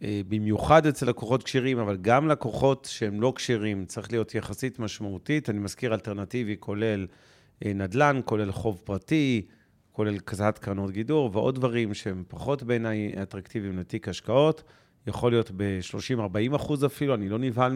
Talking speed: 140 wpm